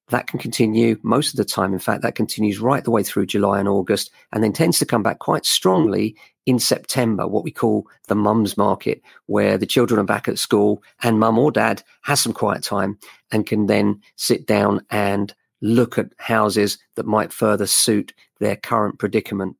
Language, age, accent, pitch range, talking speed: English, 40-59, British, 105-125 Hz, 200 wpm